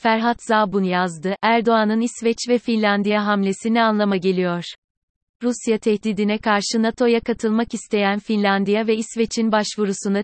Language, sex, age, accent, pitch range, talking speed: Turkish, female, 30-49, native, 195-225 Hz, 115 wpm